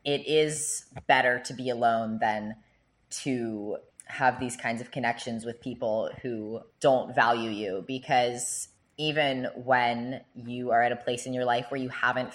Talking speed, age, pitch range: 160 wpm, 20-39, 120-140 Hz